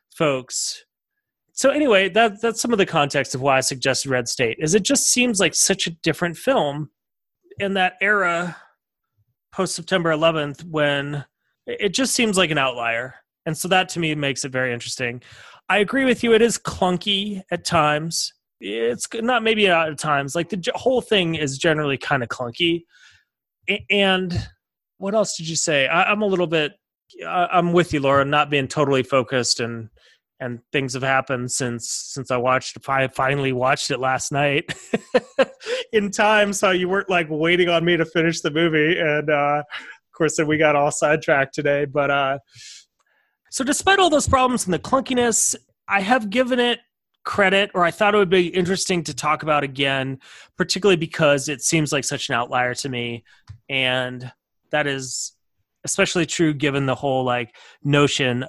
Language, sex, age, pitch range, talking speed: English, male, 30-49, 135-195 Hz, 175 wpm